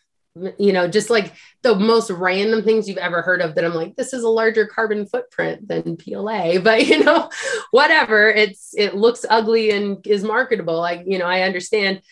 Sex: female